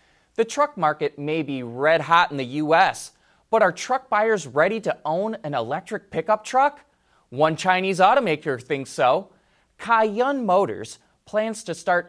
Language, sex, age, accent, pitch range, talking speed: English, male, 30-49, American, 145-215 Hz, 155 wpm